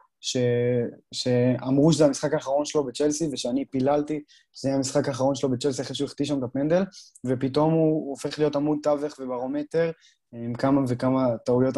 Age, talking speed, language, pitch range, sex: 20-39, 170 wpm, Hebrew, 130-150 Hz, male